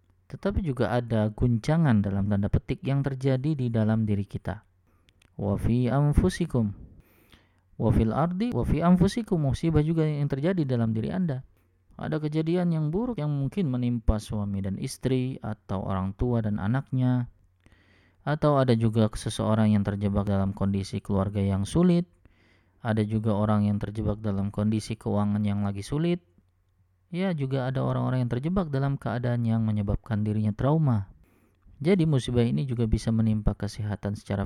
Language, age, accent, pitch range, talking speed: Indonesian, 20-39, native, 100-135 Hz, 145 wpm